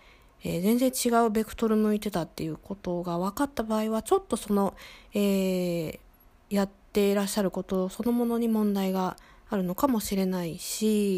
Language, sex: Japanese, female